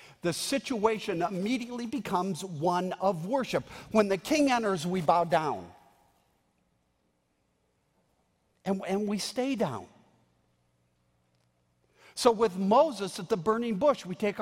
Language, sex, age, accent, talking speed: English, male, 50-69, American, 115 wpm